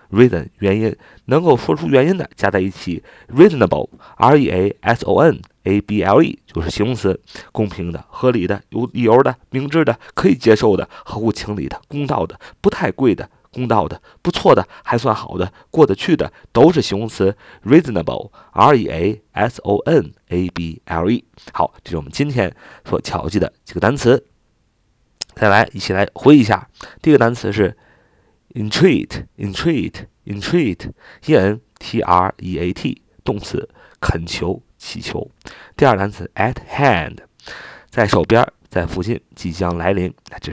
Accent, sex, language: native, male, Chinese